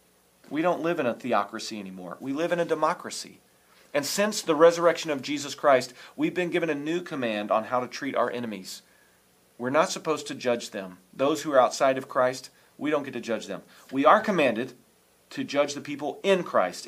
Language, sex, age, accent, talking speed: English, male, 40-59, American, 205 wpm